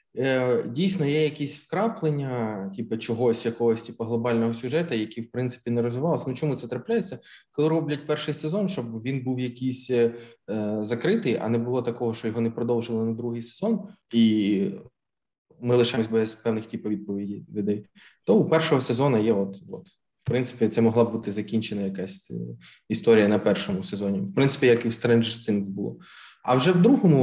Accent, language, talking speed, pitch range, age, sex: native, Ukrainian, 170 wpm, 115-135 Hz, 20-39, male